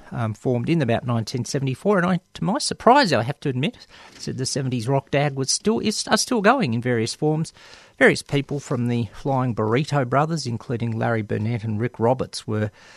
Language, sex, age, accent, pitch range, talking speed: English, male, 40-59, Australian, 120-155 Hz, 195 wpm